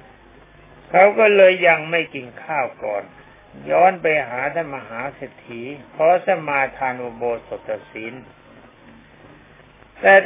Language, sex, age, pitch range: Thai, male, 60-79, 135-185 Hz